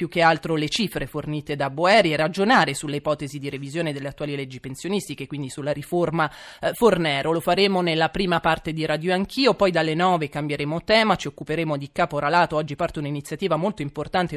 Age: 20-39